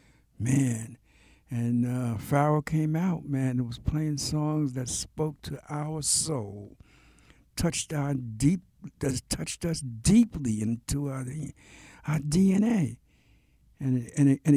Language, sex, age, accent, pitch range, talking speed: English, male, 60-79, American, 110-150 Hz, 130 wpm